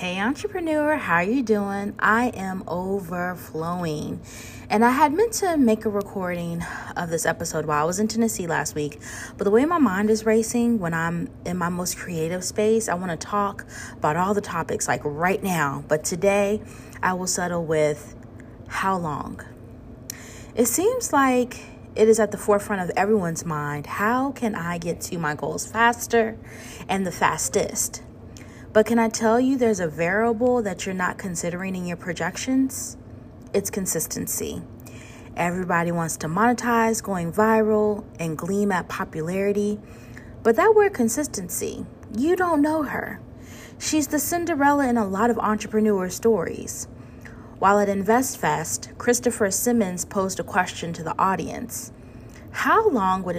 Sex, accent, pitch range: female, American, 160-225 Hz